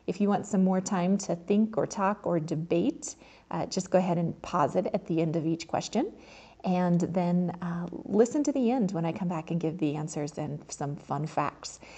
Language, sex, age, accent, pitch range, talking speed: English, female, 30-49, American, 170-220 Hz, 220 wpm